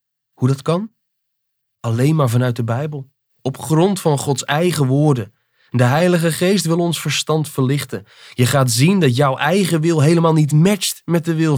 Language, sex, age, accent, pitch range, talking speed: Dutch, male, 20-39, Dutch, 130-175 Hz, 175 wpm